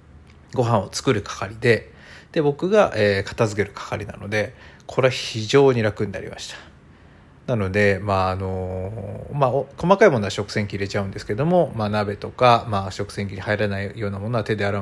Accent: native